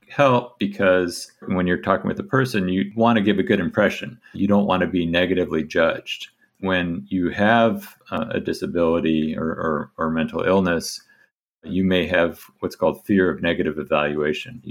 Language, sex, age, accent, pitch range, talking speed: English, male, 50-69, American, 80-95 Hz, 165 wpm